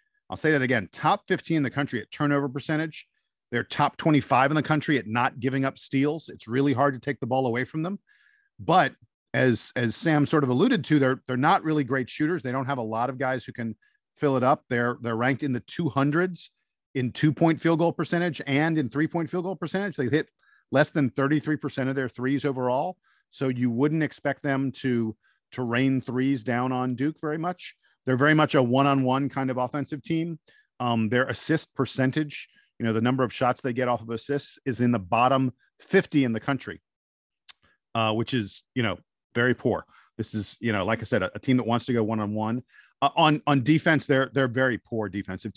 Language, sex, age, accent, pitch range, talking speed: English, male, 50-69, American, 120-150 Hz, 215 wpm